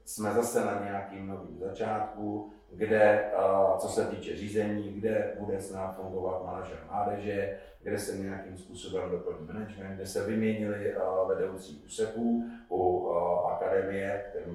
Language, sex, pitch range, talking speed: Czech, male, 95-105 Hz, 130 wpm